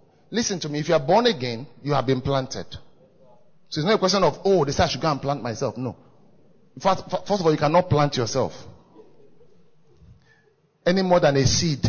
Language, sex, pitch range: English, male, 140-190 Hz